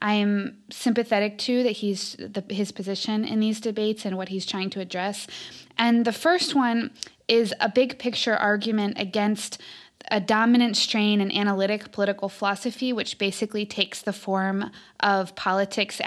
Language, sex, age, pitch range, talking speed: English, female, 20-39, 195-225 Hz, 155 wpm